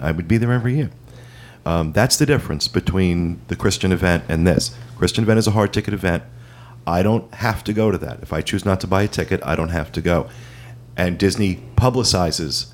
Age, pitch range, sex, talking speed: 40-59, 85-115 Hz, male, 215 wpm